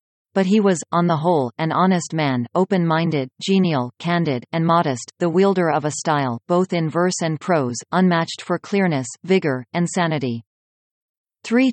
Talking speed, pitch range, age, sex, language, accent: 160 wpm, 150-180 Hz, 40-59, female, English, American